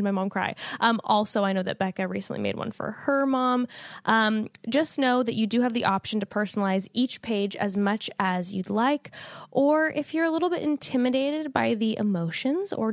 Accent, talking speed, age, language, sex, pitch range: American, 205 wpm, 10-29, English, female, 195-250 Hz